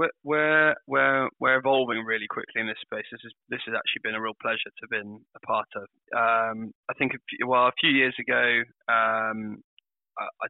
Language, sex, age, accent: English, male, 20-39, British